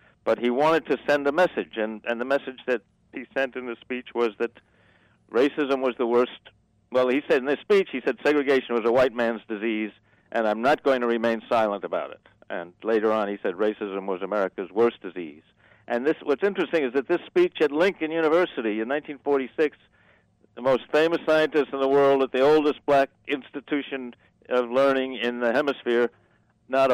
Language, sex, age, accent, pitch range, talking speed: English, male, 60-79, American, 105-140 Hz, 195 wpm